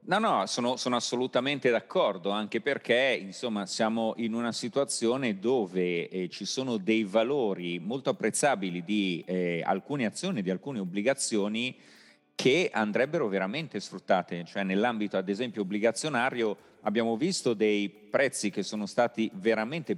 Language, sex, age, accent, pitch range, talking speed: Italian, male, 40-59, native, 100-125 Hz, 135 wpm